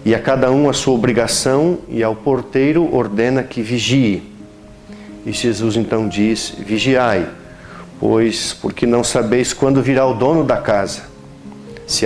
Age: 50-69